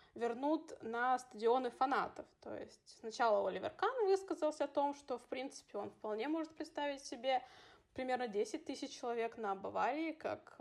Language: Russian